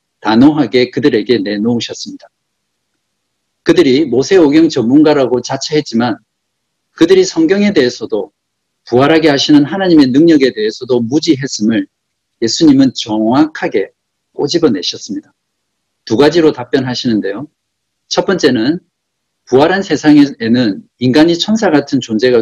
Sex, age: male, 50-69